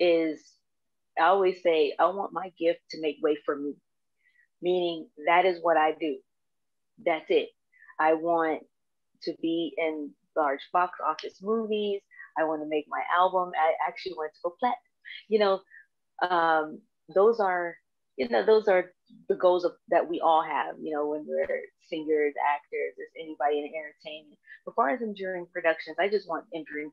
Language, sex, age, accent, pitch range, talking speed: English, female, 30-49, American, 160-215 Hz, 170 wpm